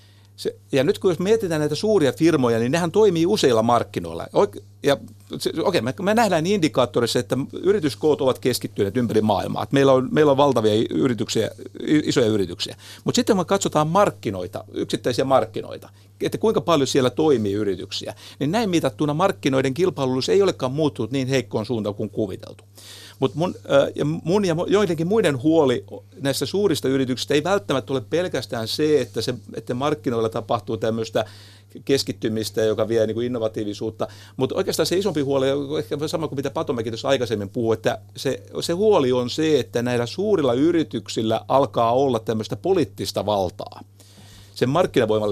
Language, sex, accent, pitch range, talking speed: Finnish, male, native, 110-165 Hz, 150 wpm